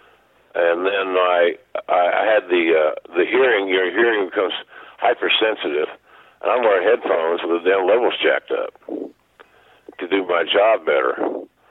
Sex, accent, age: male, American, 50-69